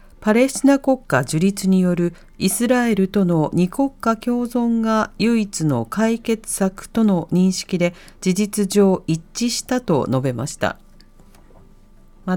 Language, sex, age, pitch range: Japanese, female, 40-59, 170-245 Hz